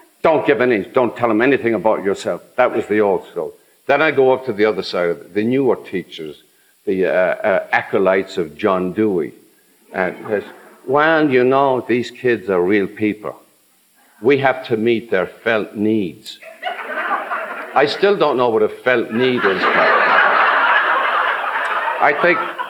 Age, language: 60-79, English